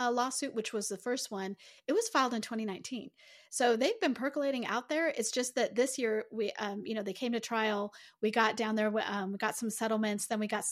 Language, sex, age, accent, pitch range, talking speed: English, female, 30-49, American, 205-245 Hz, 235 wpm